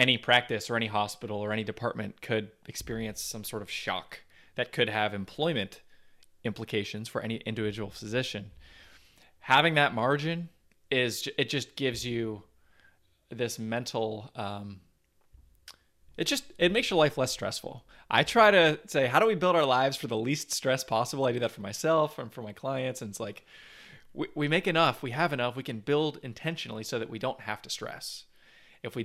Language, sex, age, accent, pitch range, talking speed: English, male, 20-39, American, 110-140 Hz, 185 wpm